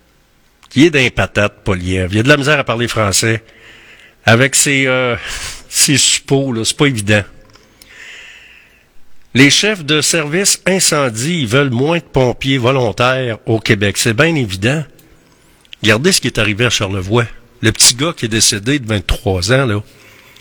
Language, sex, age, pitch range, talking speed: French, male, 50-69, 110-145 Hz, 160 wpm